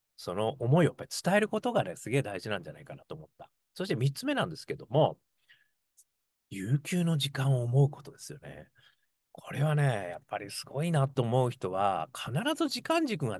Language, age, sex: Japanese, 40-59, male